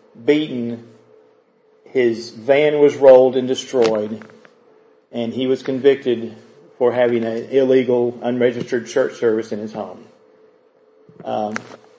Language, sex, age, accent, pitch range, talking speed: English, male, 40-59, American, 120-155 Hz, 110 wpm